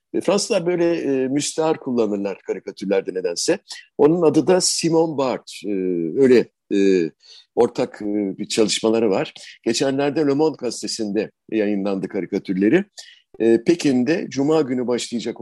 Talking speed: 120 wpm